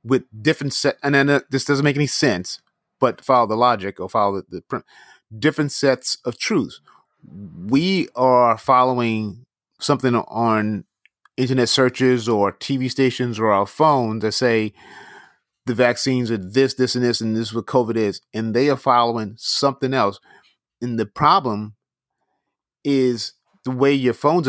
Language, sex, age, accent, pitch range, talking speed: English, male, 30-49, American, 115-145 Hz, 155 wpm